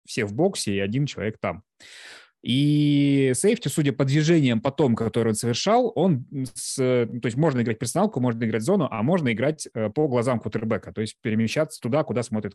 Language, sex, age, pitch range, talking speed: Russian, male, 20-39, 110-150 Hz, 185 wpm